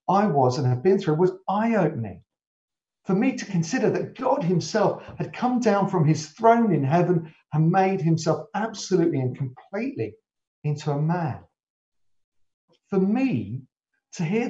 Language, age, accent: English, 50-69, British